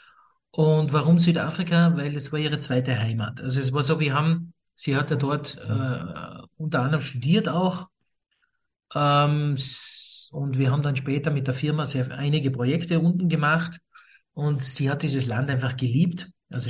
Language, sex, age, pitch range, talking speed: German, male, 50-69, 135-160 Hz, 165 wpm